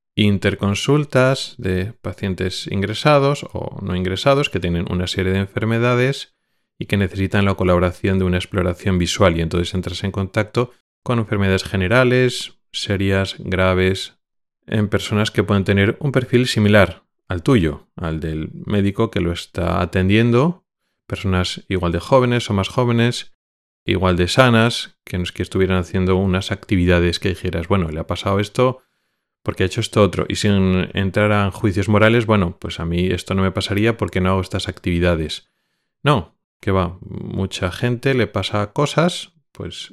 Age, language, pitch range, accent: 30-49, Spanish, 90-110 Hz, Spanish